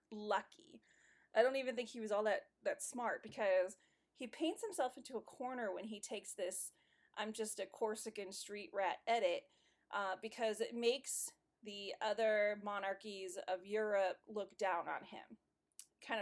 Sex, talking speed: female, 160 wpm